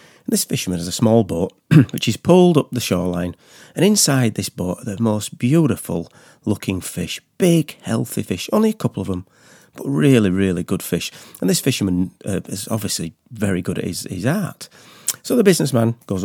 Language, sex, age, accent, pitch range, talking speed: English, male, 40-59, British, 100-155 Hz, 190 wpm